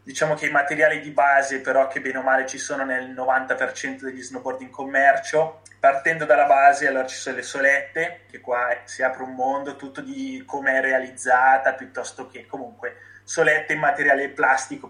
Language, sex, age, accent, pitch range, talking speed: Italian, male, 20-39, native, 130-160 Hz, 180 wpm